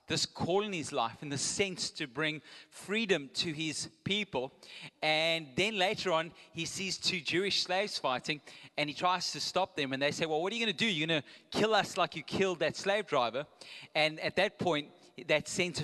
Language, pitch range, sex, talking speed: English, 150-185 Hz, male, 210 wpm